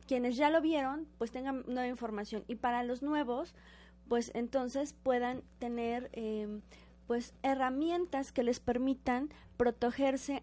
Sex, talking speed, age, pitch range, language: female, 130 wpm, 20-39, 235-280 Hz, Spanish